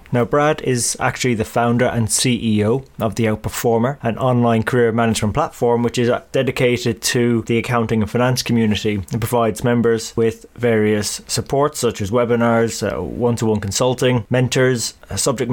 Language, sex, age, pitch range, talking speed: English, male, 20-39, 110-130 Hz, 150 wpm